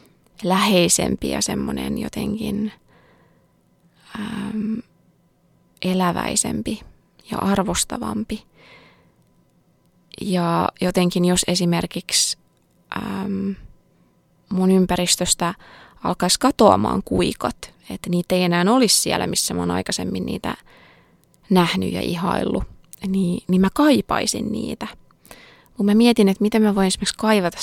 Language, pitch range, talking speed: English, 180-215 Hz, 100 wpm